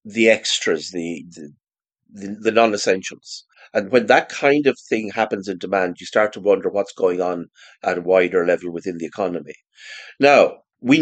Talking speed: 170 wpm